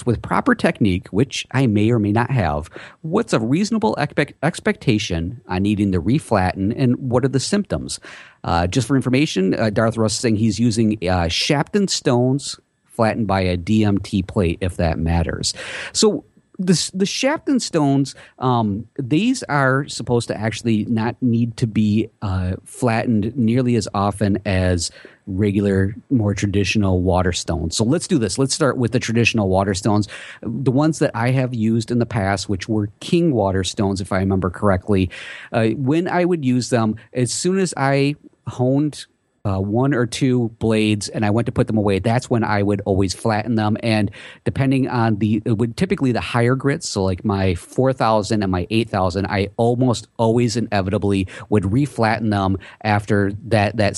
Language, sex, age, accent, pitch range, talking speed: English, male, 50-69, American, 100-125 Hz, 175 wpm